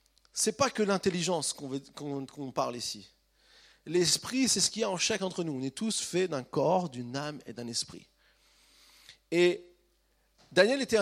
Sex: male